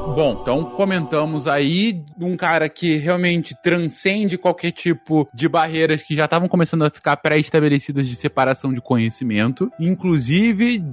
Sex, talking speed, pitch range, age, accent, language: male, 135 wpm, 145-185 Hz, 20-39, Brazilian, Portuguese